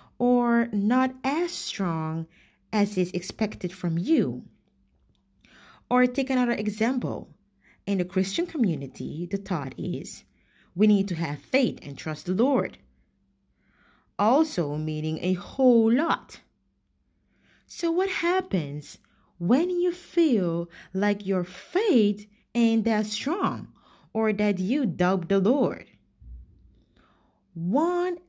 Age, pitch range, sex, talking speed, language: 30-49, 165-235 Hz, female, 110 wpm, English